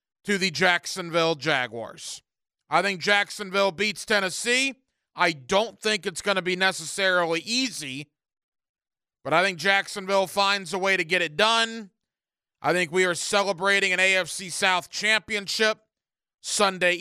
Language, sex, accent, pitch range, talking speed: English, male, American, 180-210 Hz, 140 wpm